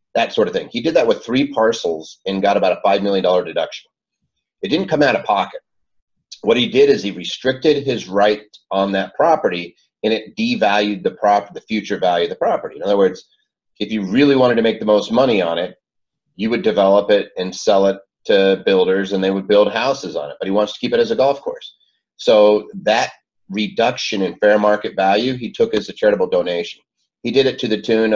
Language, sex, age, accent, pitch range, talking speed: English, male, 30-49, American, 100-130 Hz, 220 wpm